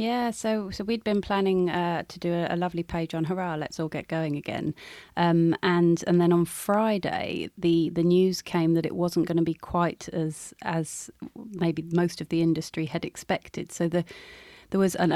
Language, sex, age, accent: English, female, 30-49, British